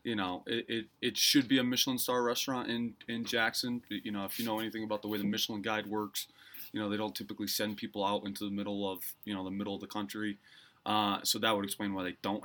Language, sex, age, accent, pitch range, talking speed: English, male, 20-39, American, 100-120 Hz, 260 wpm